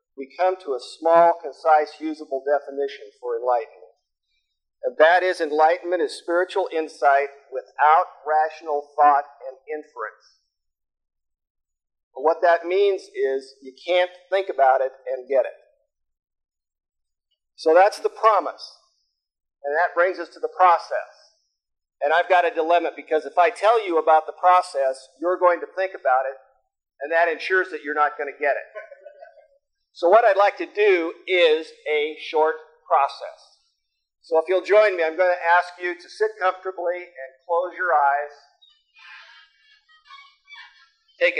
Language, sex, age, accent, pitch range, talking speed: English, male, 50-69, American, 145-220 Hz, 150 wpm